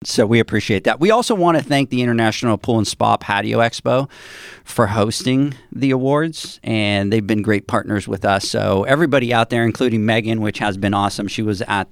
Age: 40-59